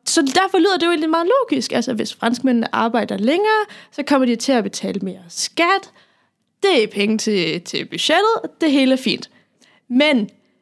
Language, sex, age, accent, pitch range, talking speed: Danish, female, 10-29, native, 225-320 Hz, 180 wpm